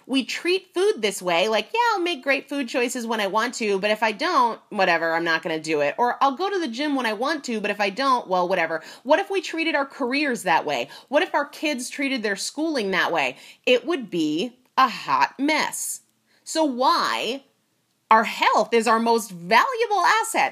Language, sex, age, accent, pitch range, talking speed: English, female, 30-49, American, 210-295 Hz, 220 wpm